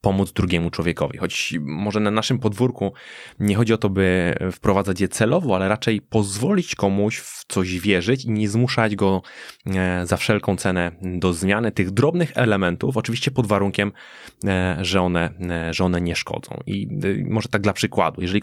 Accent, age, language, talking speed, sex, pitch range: native, 20-39, Polish, 160 wpm, male, 95-115 Hz